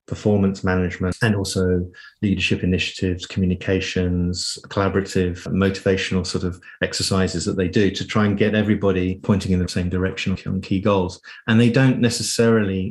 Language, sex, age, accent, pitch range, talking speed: English, male, 40-59, British, 95-110 Hz, 150 wpm